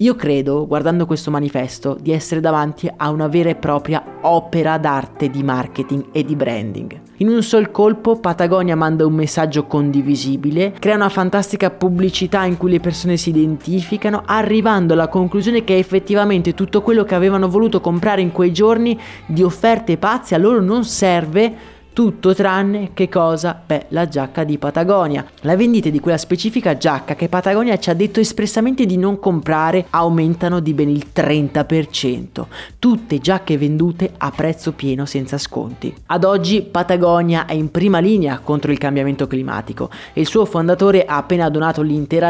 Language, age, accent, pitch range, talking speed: Italian, 20-39, native, 150-200 Hz, 165 wpm